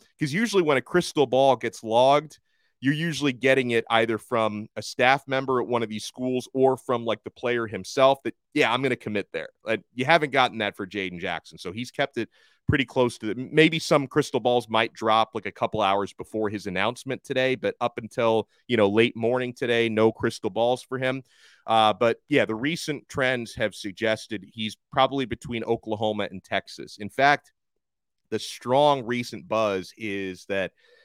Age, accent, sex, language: 30-49, American, male, English